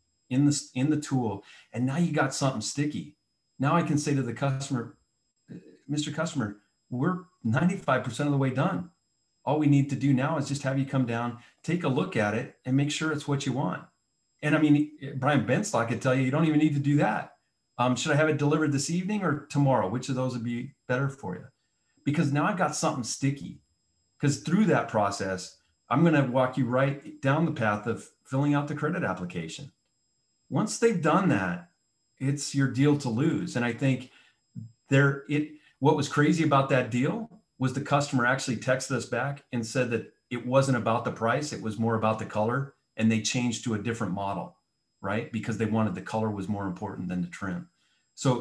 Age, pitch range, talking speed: 30-49, 115-145 Hz, 205 wpm